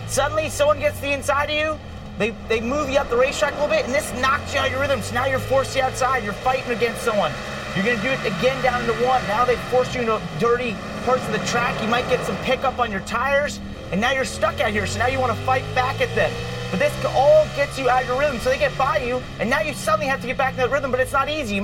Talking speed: 300 wpm